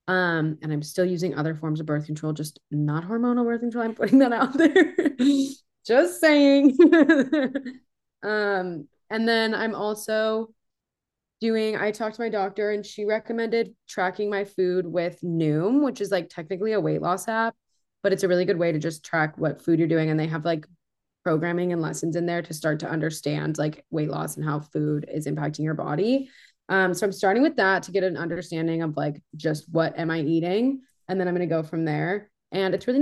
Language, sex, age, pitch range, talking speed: English, female, 20-39, 165-215 Hz, 205 wpm